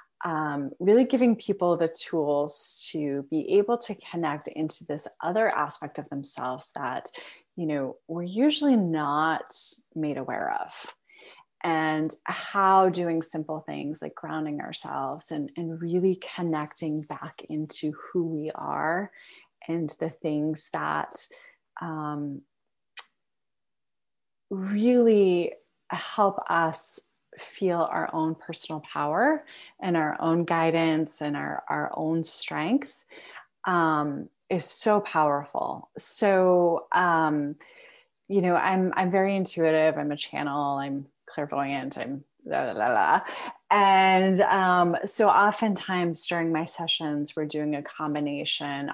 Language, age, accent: English, 30-49, American